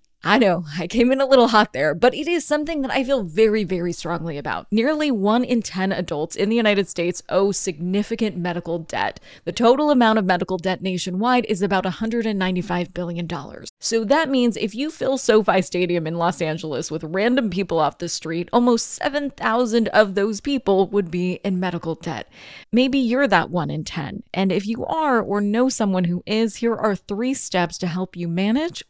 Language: English